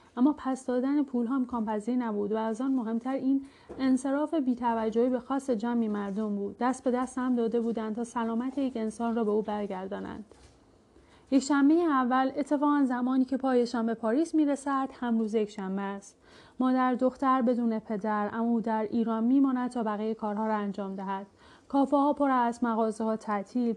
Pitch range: 220-260 Hz